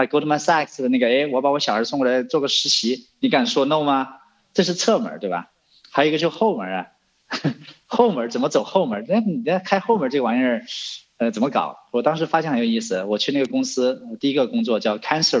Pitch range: 120-200 Hz